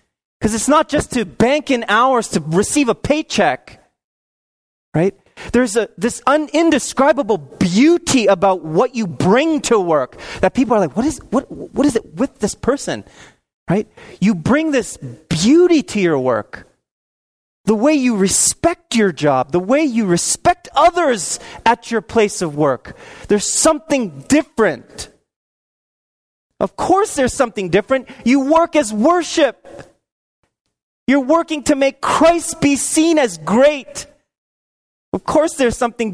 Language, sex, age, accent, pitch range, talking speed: English, male, 30-49, American, 195-280 Hz, 145 wpm